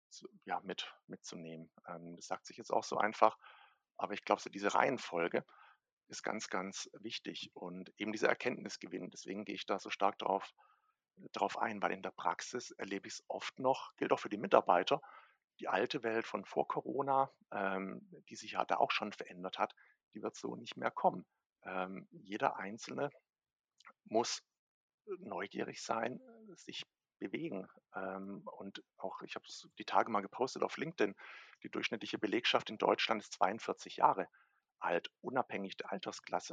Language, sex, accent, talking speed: German, male, German, 155 wpm